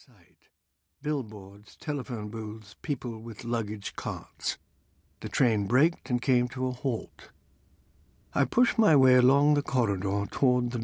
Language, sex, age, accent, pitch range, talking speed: English, male, 60-79, American, 105-135 Hz, 135 wpm